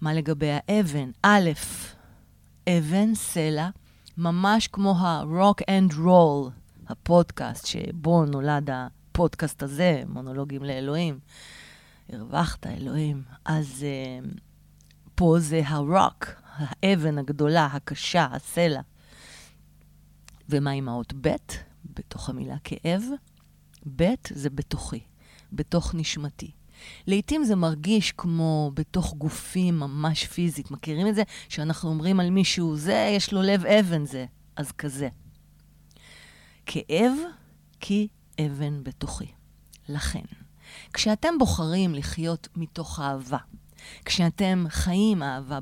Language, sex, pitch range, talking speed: Hebrew, female, 140-180 Hz, 100 wpm